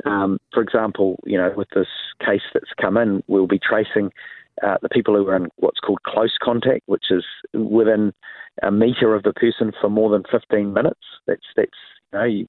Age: 40-59